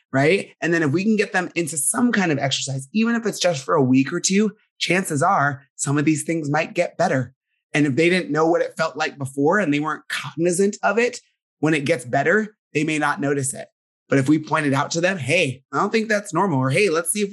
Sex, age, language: male, 30-49, English